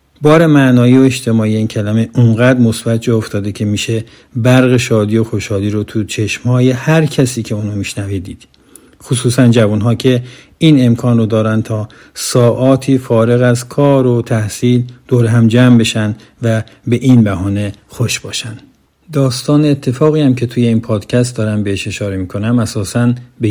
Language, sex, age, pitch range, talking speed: Persian, male, 50-69, 105-130 Hz, 155 wpm